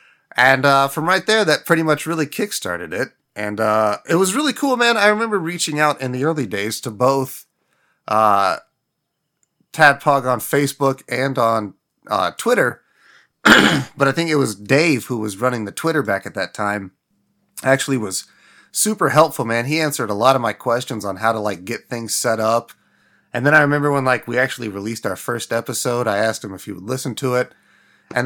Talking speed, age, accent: 200 wpm, 30-49, American